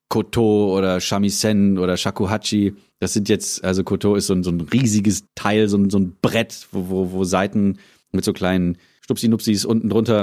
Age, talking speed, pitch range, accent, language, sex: 30-49, 180 wpm, 100-130 Hz, German, German, male